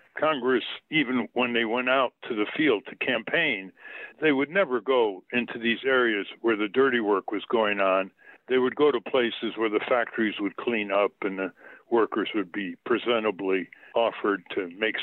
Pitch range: 115-160 Hz